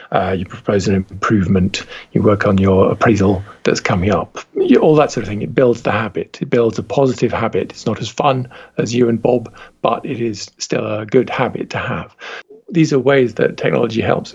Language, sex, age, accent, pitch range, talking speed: English, male, 50-69, British, 100-135 Hz, 210 wpm